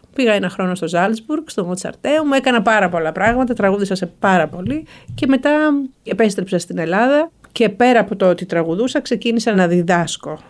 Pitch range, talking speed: 185-250 Hz, 170 wpm